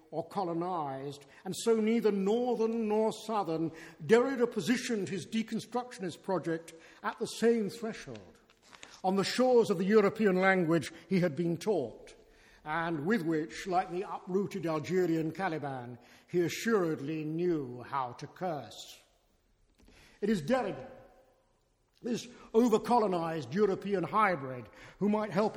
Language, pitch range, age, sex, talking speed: English, 160-220 Hz, 50-69, male, 120 wpm